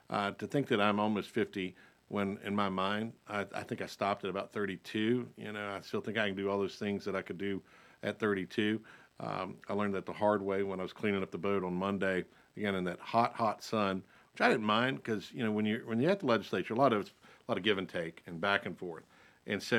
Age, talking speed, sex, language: 50-69, 265 wpm, male, English